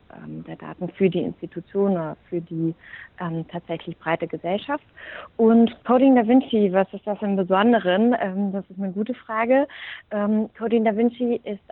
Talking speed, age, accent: 160 wpm, 30-49, German